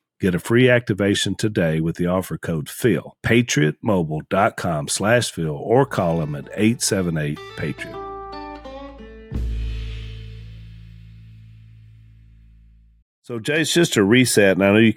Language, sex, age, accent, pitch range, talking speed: English, male, 50-69, American, 85-110 Hz, 125 wpm